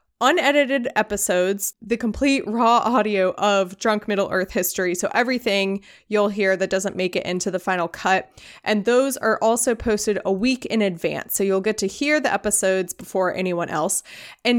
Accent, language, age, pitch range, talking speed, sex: American, English, 20-39, 195-250 Hz, 175 wpm, female